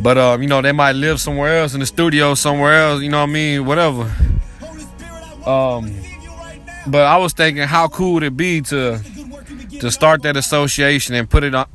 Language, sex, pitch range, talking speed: English, male, 115-145 Hz, 205 wpm